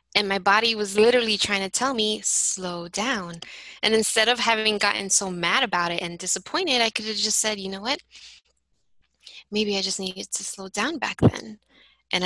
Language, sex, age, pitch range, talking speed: English, female, 20-39, 180-235 Hz, 195 wpm